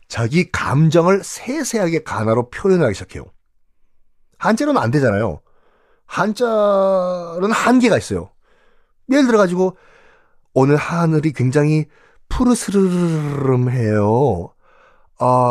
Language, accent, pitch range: Korean, native, 120-195 Hz